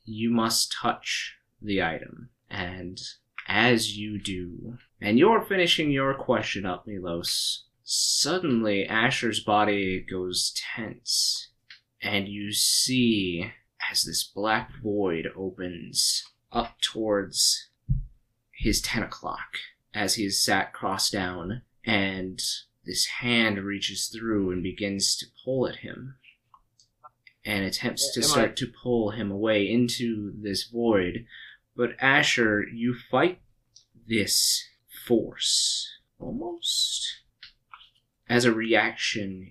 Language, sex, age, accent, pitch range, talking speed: English, male, 20-39, American, 100-120 Hz, 110 wpm